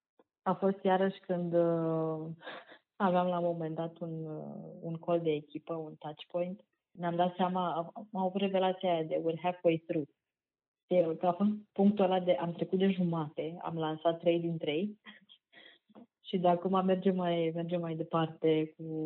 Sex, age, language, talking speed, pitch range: female, 20-39, Romanian, 170 wpm, 155-175 Hz